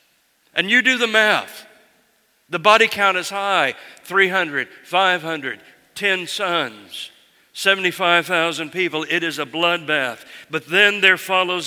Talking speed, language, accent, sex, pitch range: 125 wpm, English, American, male, 140-180 Hz